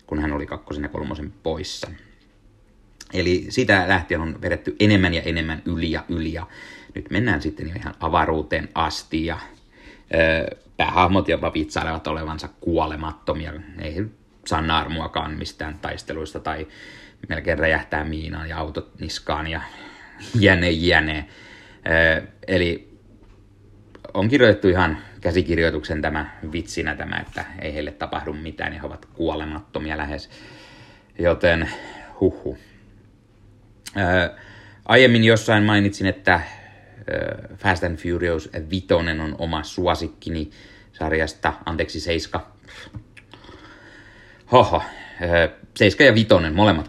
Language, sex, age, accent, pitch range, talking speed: Finnish, male, 30-49, native, 80-100 Hz, 110 wpm